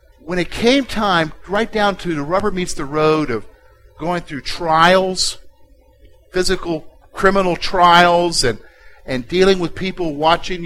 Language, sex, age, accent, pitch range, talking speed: English, male, 50-69, American, 170-255 Hz, 140 wpm